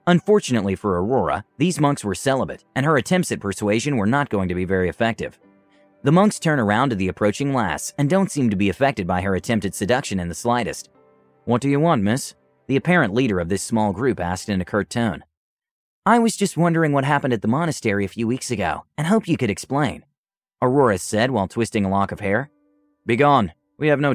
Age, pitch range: 30-49, 100-135 Hz